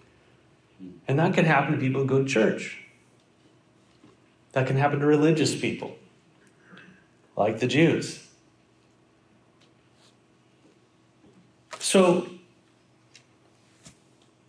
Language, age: English, 40-59